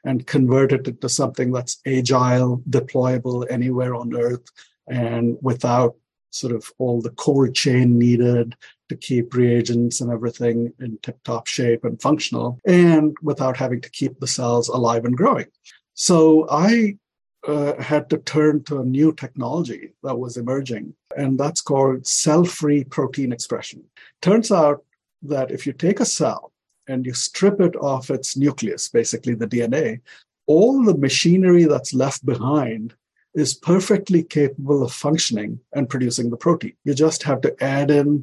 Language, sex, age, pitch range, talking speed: English, male, 50-69, 125-155 Hz, 155 wpm